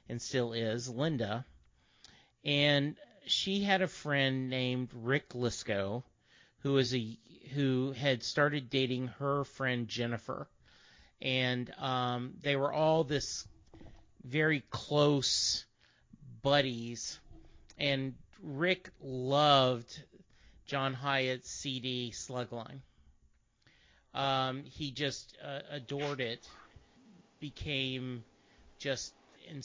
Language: English